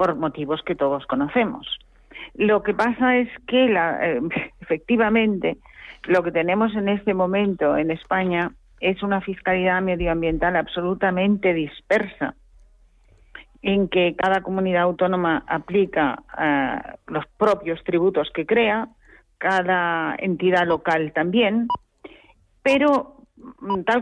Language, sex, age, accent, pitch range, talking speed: Spanish, female, 50-69, Spanish, 165-210 Hz, 110 wpm